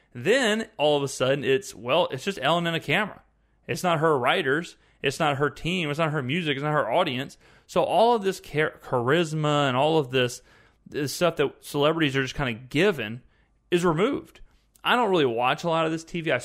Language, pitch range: English, 125-180 Hz